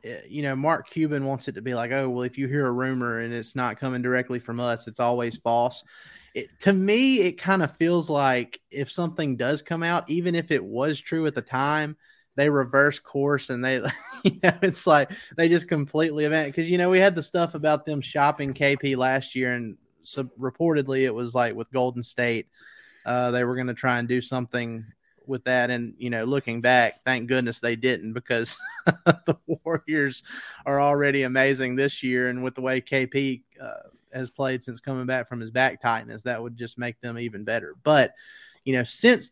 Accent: American